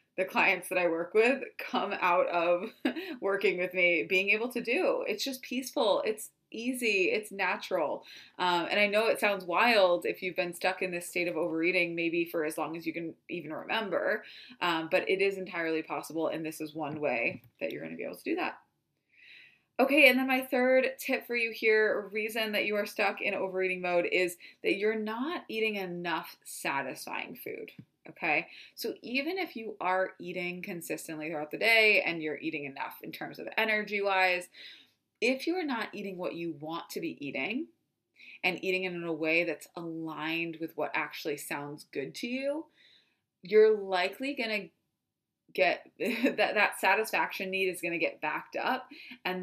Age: 20-39